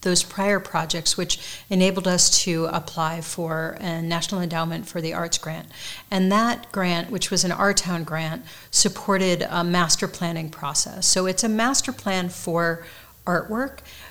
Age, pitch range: 40-59, 170-200 Hz